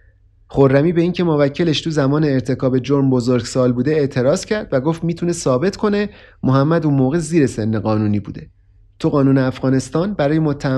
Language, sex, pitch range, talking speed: Persian, male, 120-150 Hz, 155 wpm